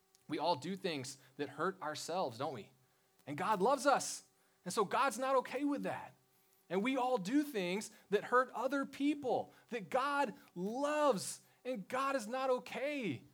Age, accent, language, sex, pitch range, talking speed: 30-49, American, English, male, 140-205 Hz, 165 wpm